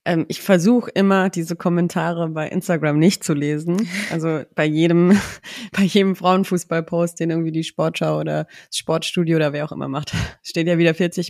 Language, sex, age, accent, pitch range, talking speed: German, female, 30-49, German, 165-195 Hz, 175 wpm